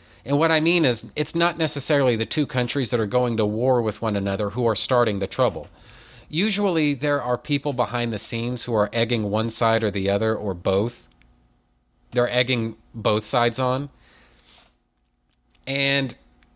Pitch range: 105-140 Hz